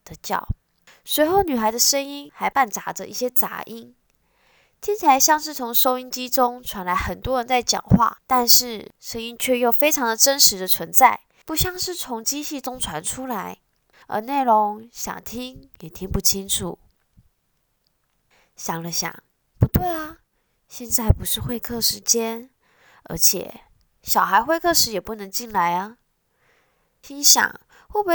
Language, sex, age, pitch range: Chinese, female, 10-29, 205-275 Hz